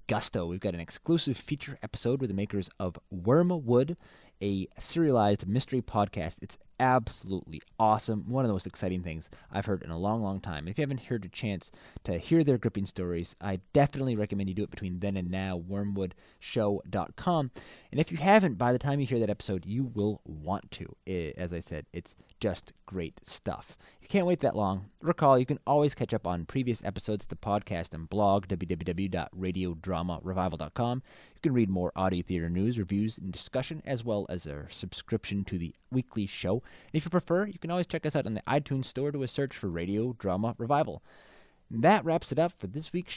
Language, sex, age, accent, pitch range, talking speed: English, male, 20-39, American, 95-135 Hz, 200 wpm